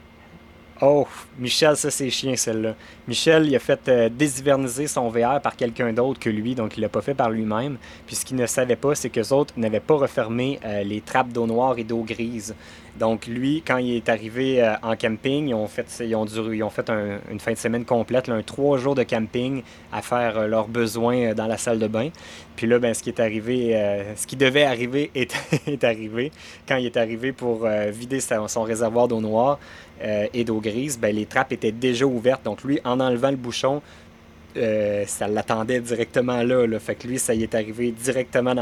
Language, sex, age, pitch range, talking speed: French, male, 20-39, 110-130 Hz, 225 wpm